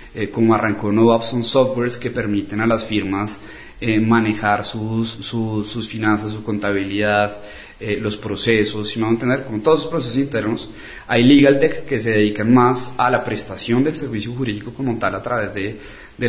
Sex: male